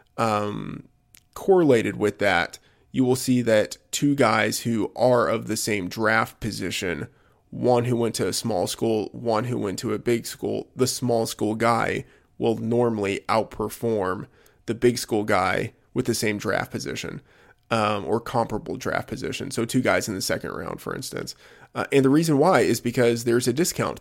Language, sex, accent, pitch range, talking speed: English, male, American, 110-130 Hz, 175 wpm